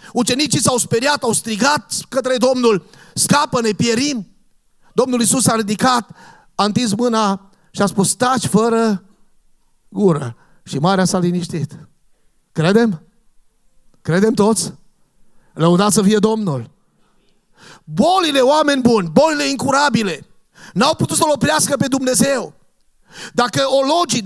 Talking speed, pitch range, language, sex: 115 wpm, 210-275 Hz, Romanian, male